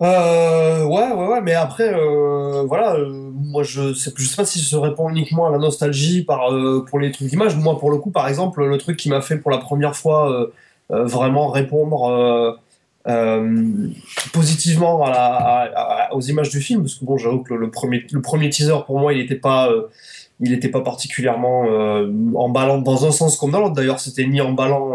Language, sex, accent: French, male, French